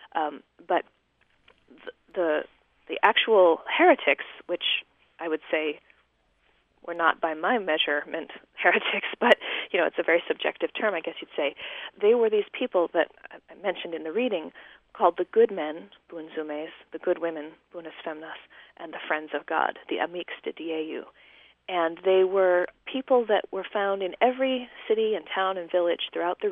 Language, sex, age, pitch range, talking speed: English, female, 30-49, 170-240 Hz, 165 wpm